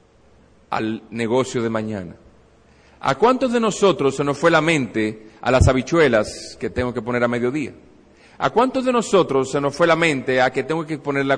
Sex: male